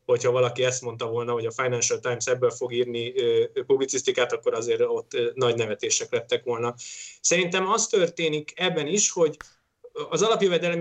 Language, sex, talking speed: Hungarian, male, 155 wpm